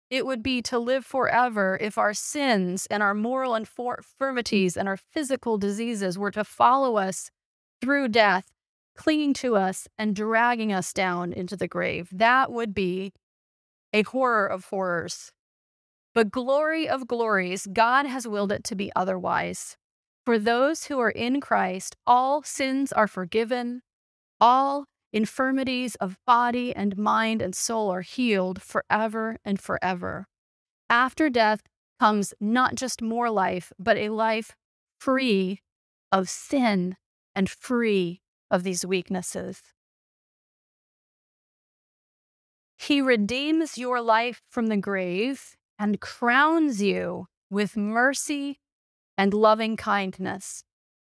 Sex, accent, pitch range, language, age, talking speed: female, American, 195-250 Hz, English, 30-49, 125 wpm